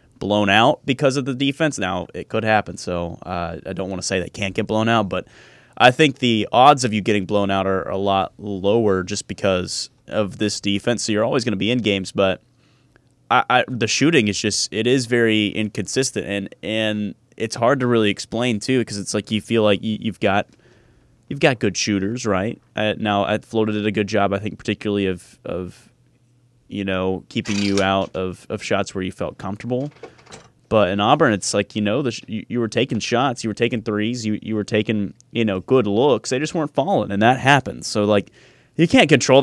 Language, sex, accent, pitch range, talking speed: English, male, American, 100-125 Hz, 220 wpm